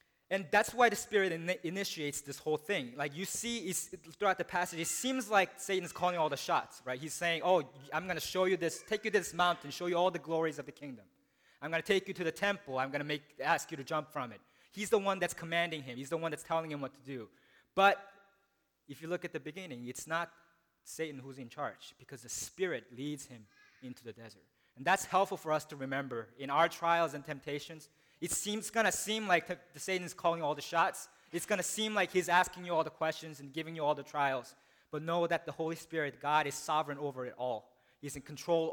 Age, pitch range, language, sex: 20-39, 140-180 Hz, English, male